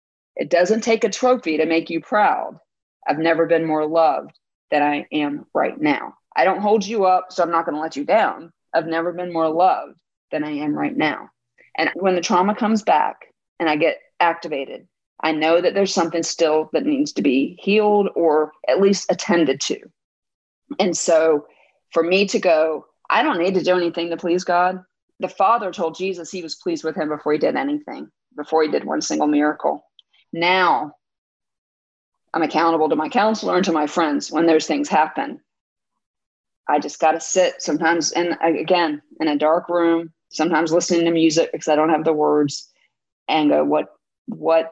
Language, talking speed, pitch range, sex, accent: English, 190 wpm, 155-185 Hz, female, American